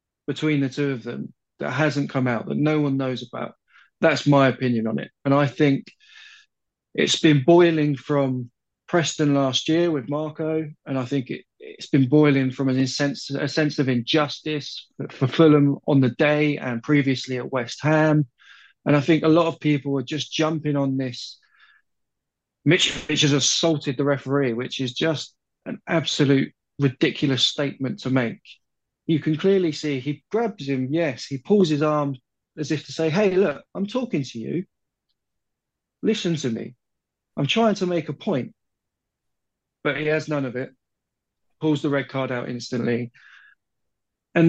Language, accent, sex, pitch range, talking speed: English, British, male, 130-155 Hz, 165 wpm